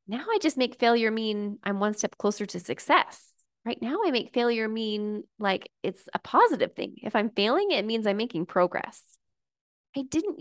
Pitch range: 225-310 Hz